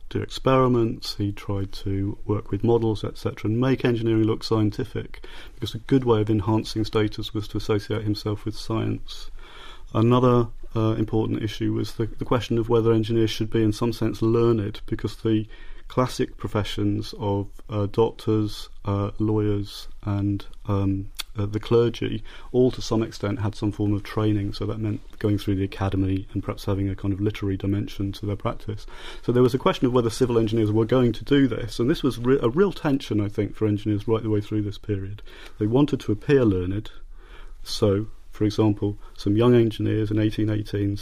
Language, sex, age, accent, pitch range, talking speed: English, male, 30-49, British, 100-115 Hz, 190 wpm